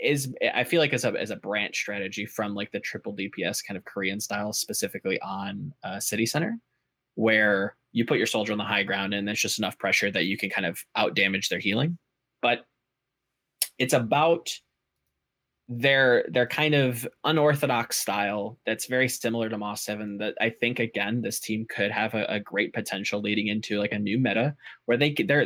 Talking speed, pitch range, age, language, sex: 195 wpm, 105-125 Hz, 20-39, English, male